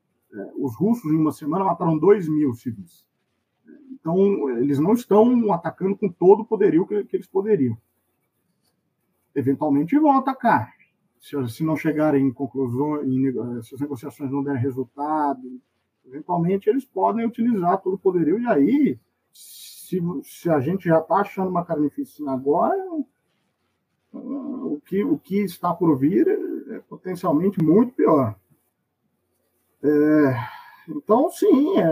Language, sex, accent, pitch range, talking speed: Portuguese, male, Brazilian, 140-220 Hz, 120 wpm